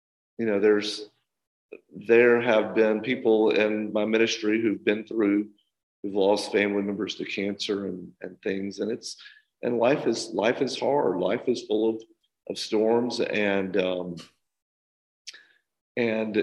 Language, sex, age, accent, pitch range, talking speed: English, male, 50-69, American, 100-115 Hz, 140 wpm